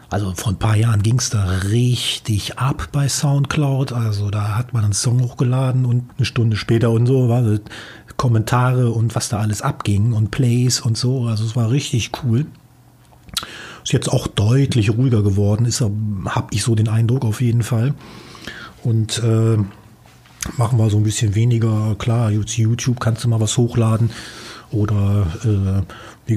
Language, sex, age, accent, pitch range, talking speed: German, male, 40-59, German, 105-120 Hz, 170 wpm